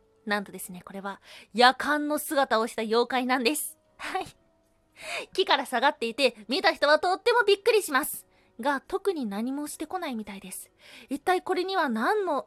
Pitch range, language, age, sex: 225-325 Hz, Japanese, 20-39, female